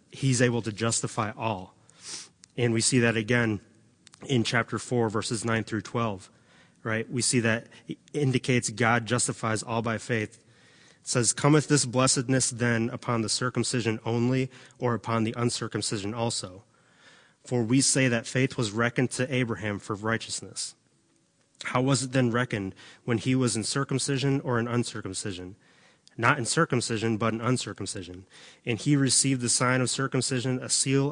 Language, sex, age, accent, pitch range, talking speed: English, male, 30-49, American, 110-125 Hz, 155 wpm